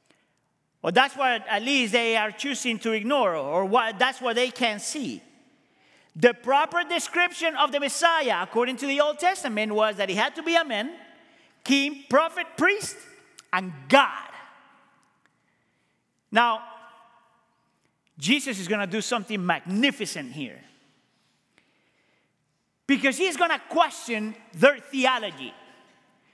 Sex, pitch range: male, 235-345 Hz